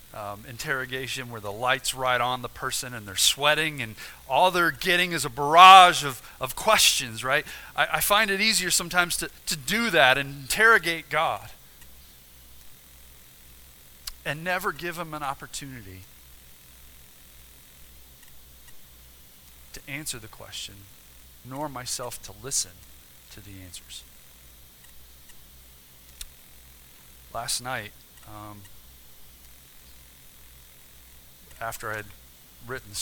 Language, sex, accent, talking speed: English, male, American, 110 wpm